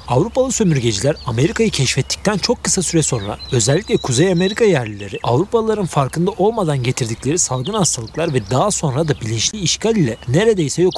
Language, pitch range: Turkish, 130-195 Hz